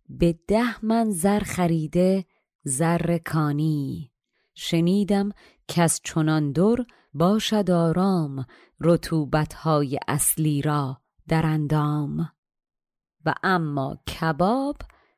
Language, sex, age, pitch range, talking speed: Persian, female, 30-49, 150-205 Hz, 85 wpm